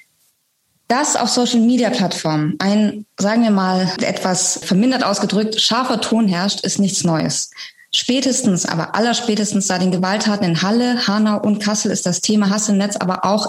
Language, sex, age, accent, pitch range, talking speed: German, female, 20-39, German, 190-230 Hz, 155 wpm